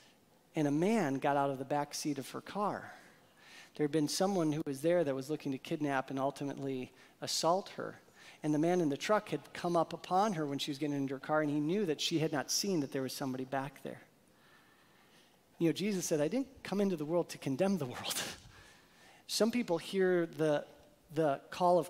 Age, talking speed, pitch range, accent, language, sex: 40-59, 220 wpm, 150-200 Hz, American, English, male